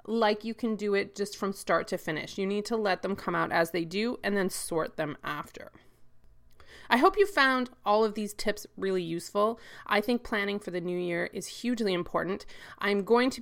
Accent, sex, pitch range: American, female, 185-225 Hz